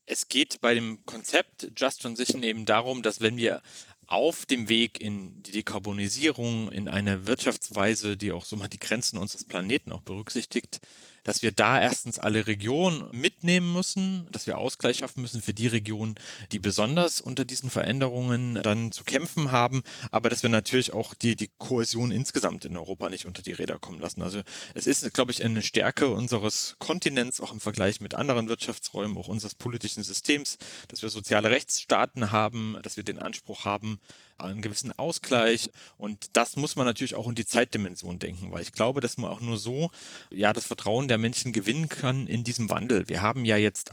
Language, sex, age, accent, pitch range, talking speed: German, male, 30-49, German, 105-125 Hz, 185 wpm